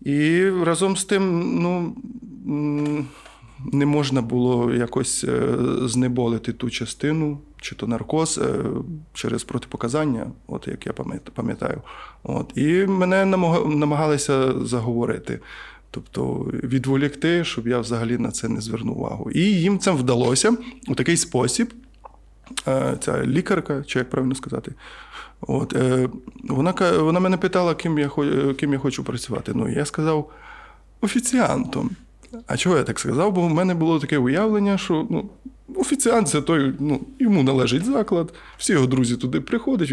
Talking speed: 135 wpm